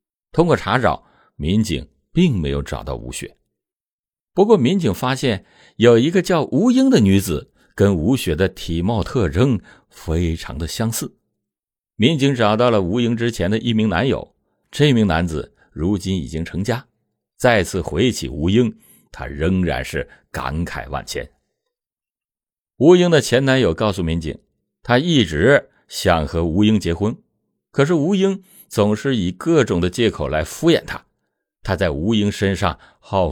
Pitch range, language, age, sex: 80-125 Hz, Chinese, 60-79, male